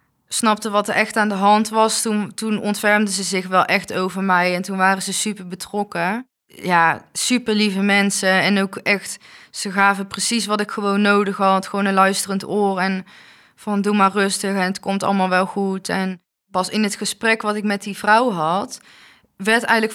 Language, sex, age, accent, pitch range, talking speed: Dutch, female, 20-39, Dutch, 180-205 Hz, 200 wpm